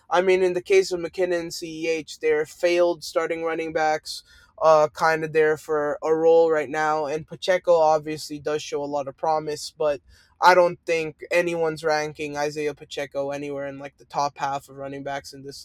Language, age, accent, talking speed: English, 20-39, American, 190 wpm